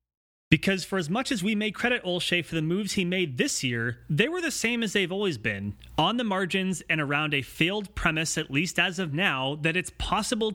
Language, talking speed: English, 230 wpm